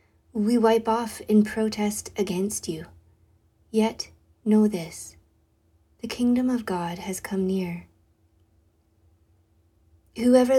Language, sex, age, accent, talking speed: English, female, 30-49, American, 100 wpm